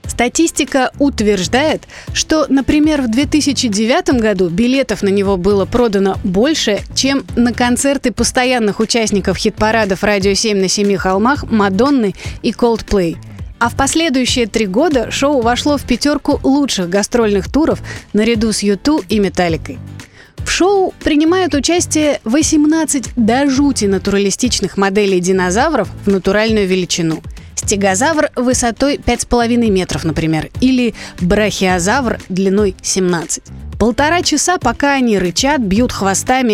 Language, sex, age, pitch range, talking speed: Russian, female, 30-49, 195-275 Hz, 120 wpm